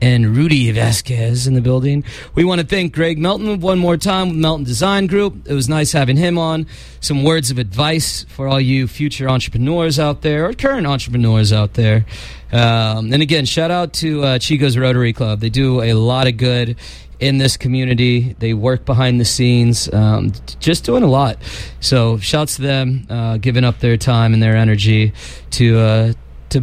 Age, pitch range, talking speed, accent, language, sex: 30-49, 115-170 Hz, 190 wpm, American, English, male